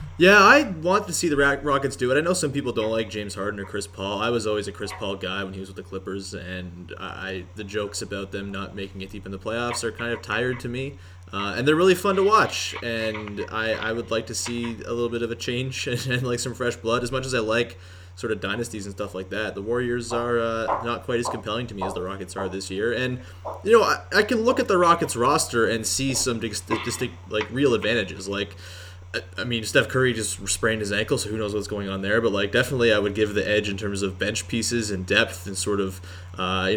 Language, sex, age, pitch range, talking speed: English, male, 20-39, 95-120 Hz, 265 wpm